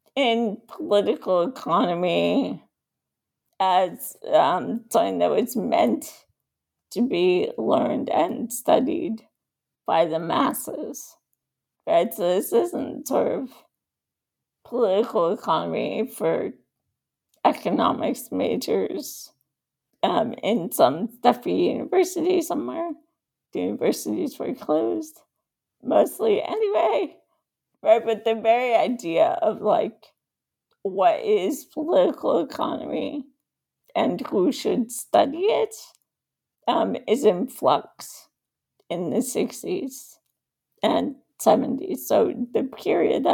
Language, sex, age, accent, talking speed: English, female, 50-69, American, 95 wpm